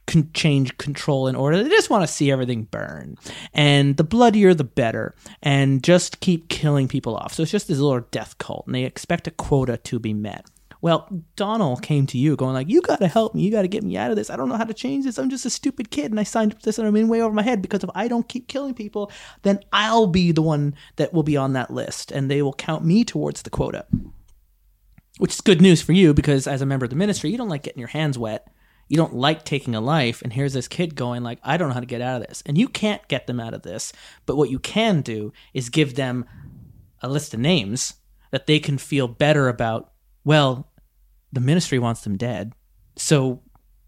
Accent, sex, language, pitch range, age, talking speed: American, male, English, 130-200 Hz, 30-49, 250 wpm